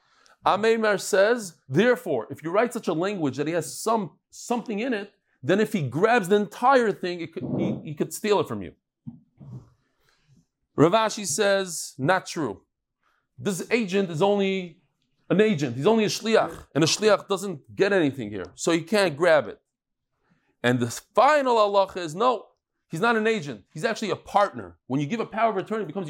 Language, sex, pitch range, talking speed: English, male, 155-210 Hz, 185 wpm